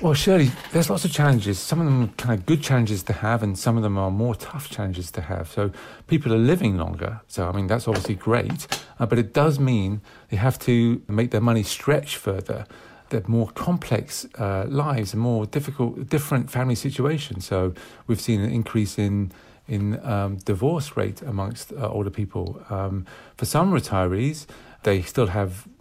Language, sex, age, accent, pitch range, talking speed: English, male, 40-59, British, 105-135 Hz, 190 wpm